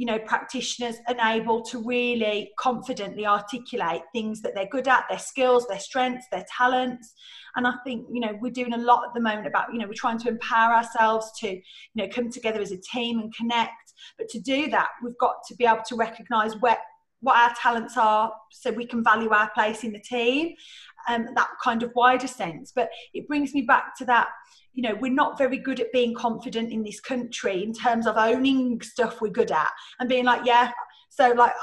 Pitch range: 220-250 Hz